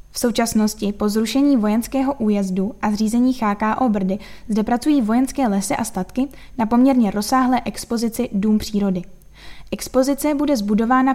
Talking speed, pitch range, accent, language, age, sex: 135 wpm, 205-245 Hz, native, Czech, 10-29, female